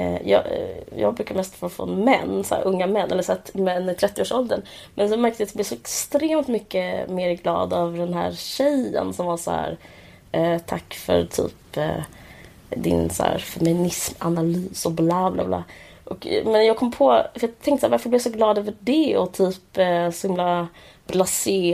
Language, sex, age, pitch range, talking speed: Swedish, female, 20-39, 160-205 Hz, 195 wpm